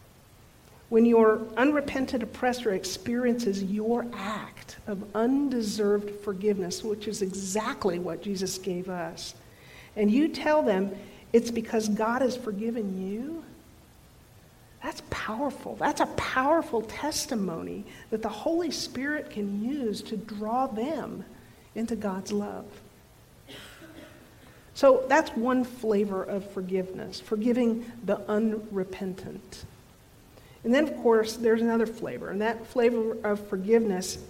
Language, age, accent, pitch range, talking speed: English, 50-69, American, 205-240 Hz, 115 wpm